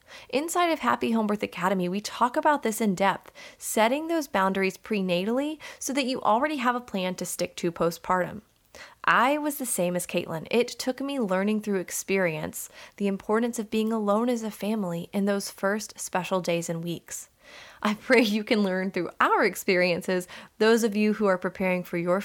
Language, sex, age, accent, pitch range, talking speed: English, female, 20-39, American, 185-250 Hz, 190 wpm